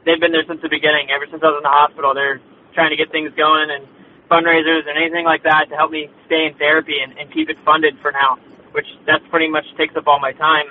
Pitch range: 145-160 Hz